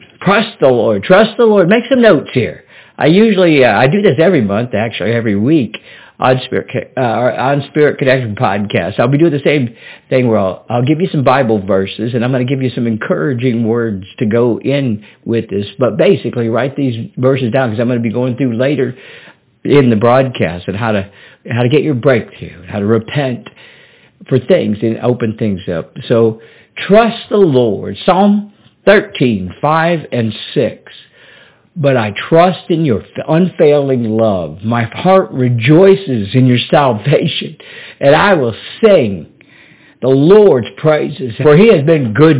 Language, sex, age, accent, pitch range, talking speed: English, male, 50-69, American, 115-155 Hz, 175 wpm